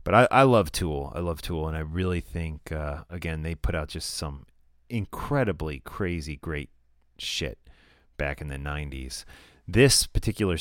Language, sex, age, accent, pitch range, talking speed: English, male, 30-49, American, 80-105 Hz, 165 wpm